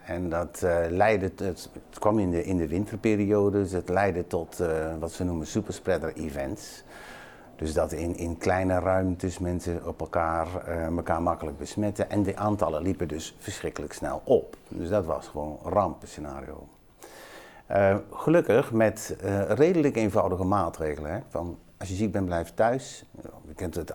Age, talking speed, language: 60-79, 165 wpm, Dutch